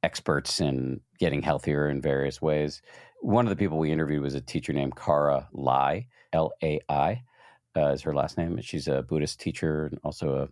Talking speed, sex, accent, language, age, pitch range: 175 wpm, male, American, English, 50-69, 75-115 Hz